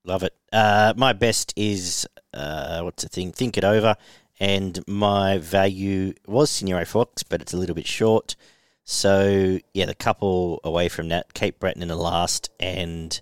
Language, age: English, 40-59